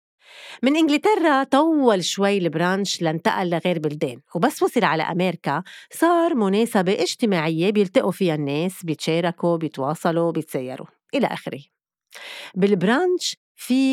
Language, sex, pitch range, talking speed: Arabic, female, 170-225 Hz, 110 wpm